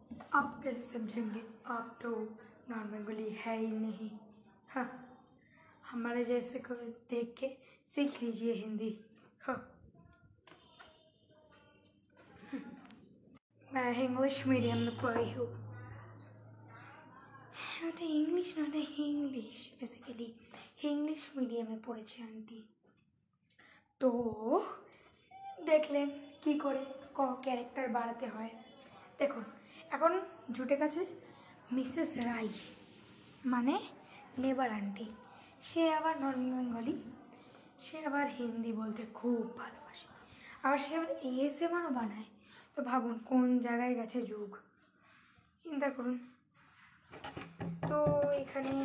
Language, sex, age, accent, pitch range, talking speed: Bengali, female, 20-39, native, 230-280 Hz, 80 wpm